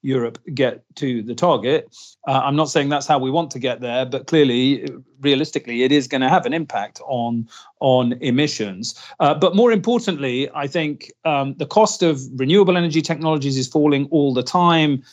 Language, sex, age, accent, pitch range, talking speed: English, male, 40-59, British, 125-155 Hz, 185 wpm